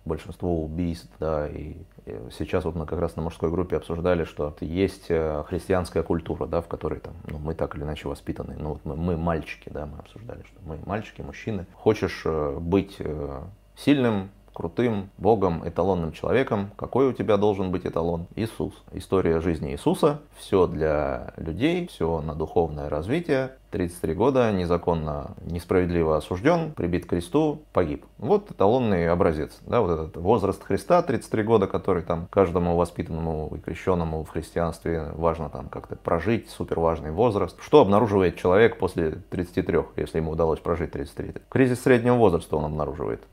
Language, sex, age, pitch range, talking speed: Russian, male, 30-49, 80-100 Hz, 155 wpm